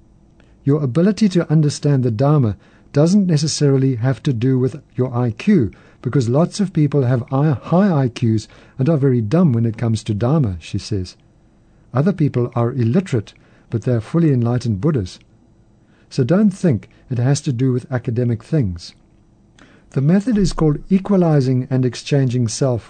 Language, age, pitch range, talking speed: English, 60-79, 115-155 Hz, 155 wpm